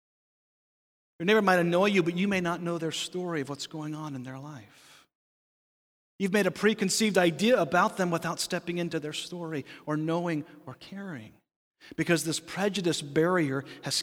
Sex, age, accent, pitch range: male, 40-59, American, 155-200 Hz